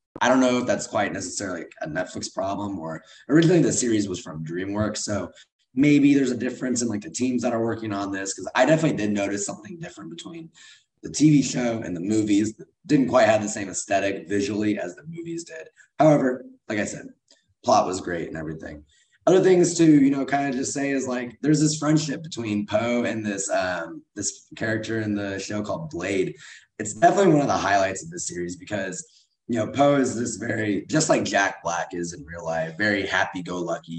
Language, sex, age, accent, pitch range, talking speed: English, male, 20-39, American, 95-135 Hz, 210 wpm